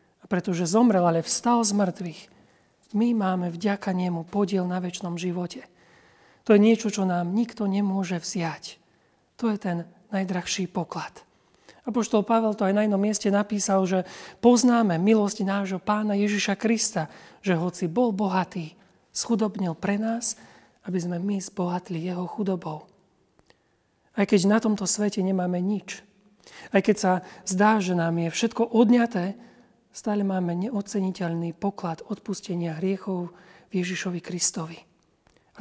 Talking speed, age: 135 wpm, 40-59